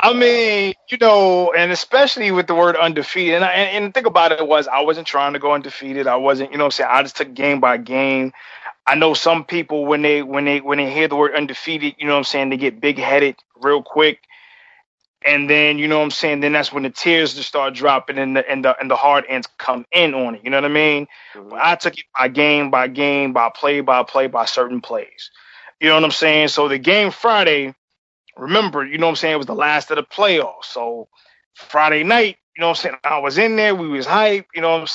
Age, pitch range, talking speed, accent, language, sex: 20-39, 140-170 Hz, 260 wpm, American, English, male